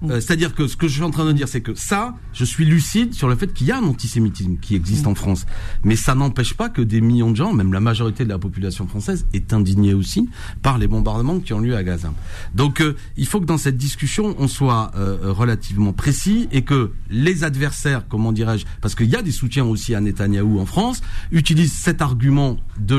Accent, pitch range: French, 110-155 Hz